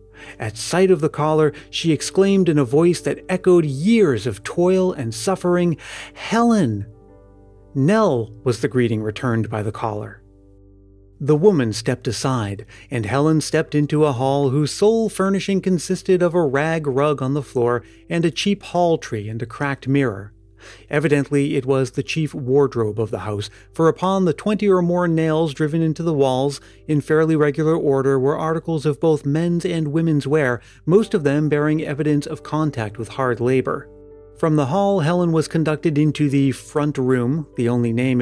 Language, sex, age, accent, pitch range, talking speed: English, male, 30-49, American, 120-165 Hz, 175 wpm